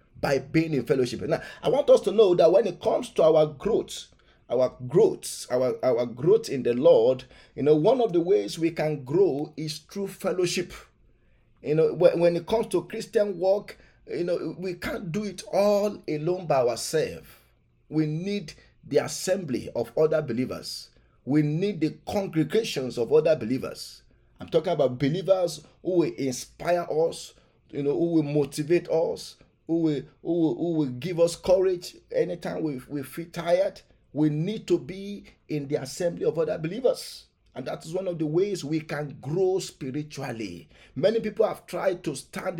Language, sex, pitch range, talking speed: English, male, 145-195 Hz, 175 wpm